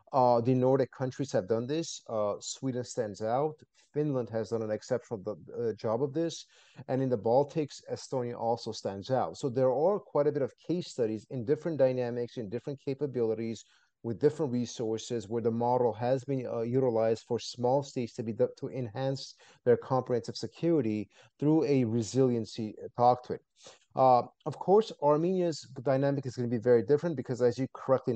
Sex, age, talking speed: male, 30-49, 175 wpm